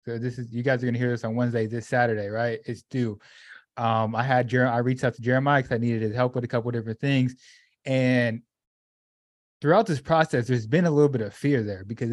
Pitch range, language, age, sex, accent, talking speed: 120-155 Hz, English, 20-39, male, American, 240 wpm